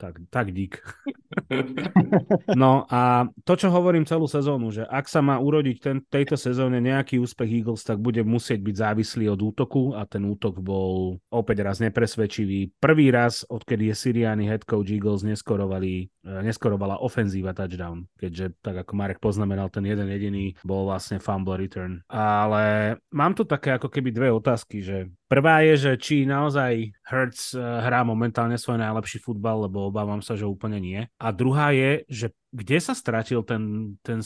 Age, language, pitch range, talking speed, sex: 30-49, Slovak, 100-130 Hz, 165 wpm, male